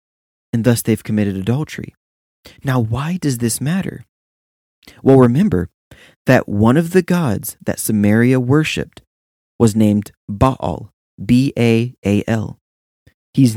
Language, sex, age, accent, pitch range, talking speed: English, male, 20-39, American, 105-145 Hz, 110 wpm